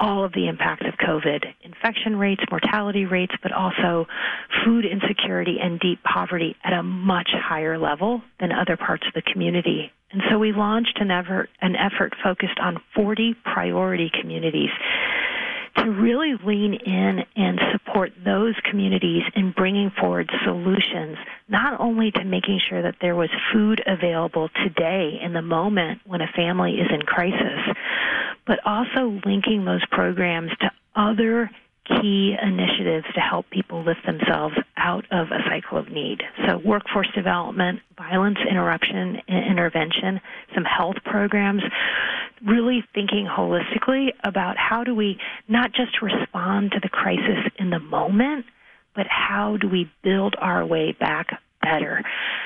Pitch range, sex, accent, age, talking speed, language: 180-220 Hz, female, American, 40-59, 145 wpm, English